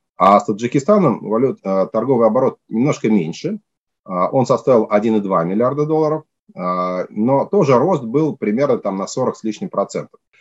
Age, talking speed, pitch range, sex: 30-49, 125 wpm, 105-150 Hz, male